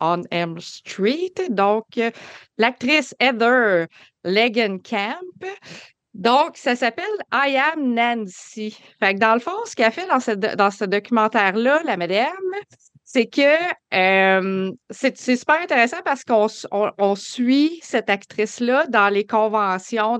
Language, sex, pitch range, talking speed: French, female, 210-275 Hz, 145 wpm